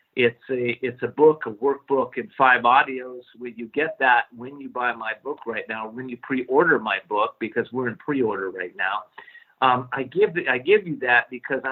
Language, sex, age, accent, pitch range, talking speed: English, male, 50-69, American, 125-155 Hz, 210 wpm